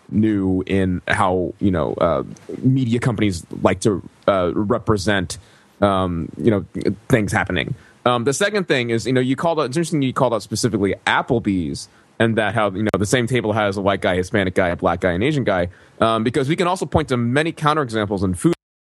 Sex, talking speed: male, 205 wpm